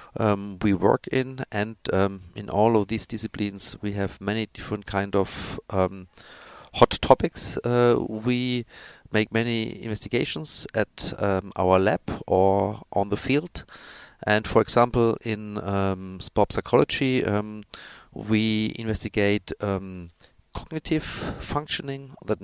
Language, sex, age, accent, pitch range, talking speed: Danish, male, 50-69, German, 95-120 Hz, 125 wpm